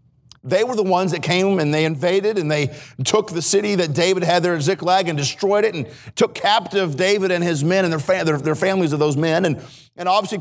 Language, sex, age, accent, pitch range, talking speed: English, male, 50-69, American, 135-190 Hz, 240 wpm